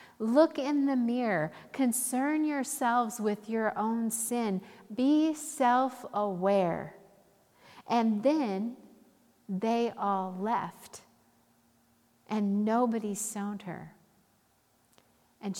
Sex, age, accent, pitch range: female, 50-69, American, 180-230 Hz